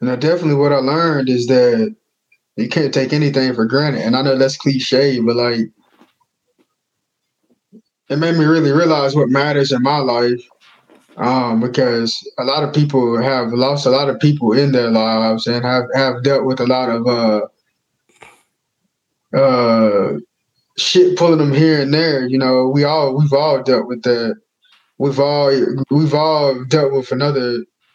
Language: English